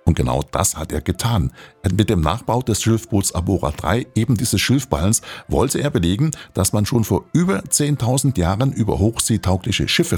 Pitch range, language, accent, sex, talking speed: 90-115 Hz, German, German, male, 170 wpm